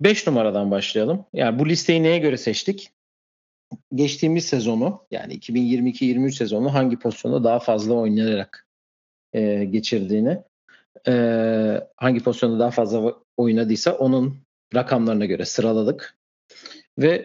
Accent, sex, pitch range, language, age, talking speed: native, male, 115-145 Hz, Turkish, 40-59, 110 wpm